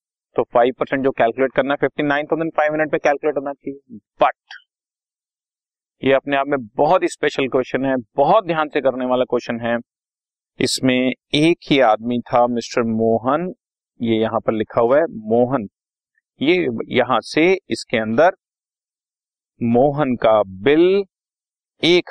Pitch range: 125-165 Hz